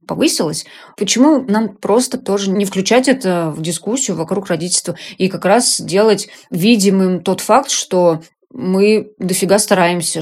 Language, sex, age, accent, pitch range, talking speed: Russian, female, 20-39, native, 170-195 Hz, 135 wpm